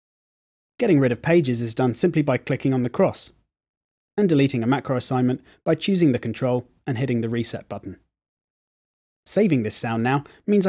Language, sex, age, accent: English, male, 30-49, British